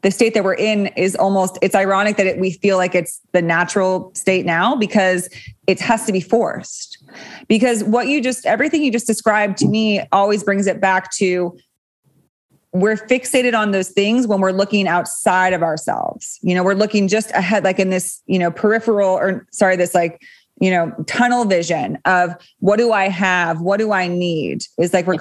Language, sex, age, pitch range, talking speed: English, female, 20-39, 185-220 Hz, 200 wpm